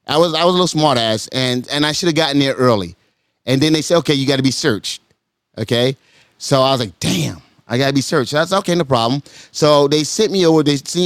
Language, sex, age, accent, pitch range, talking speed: English, male, 30-49, American, 120-155 Hz, 255 wpm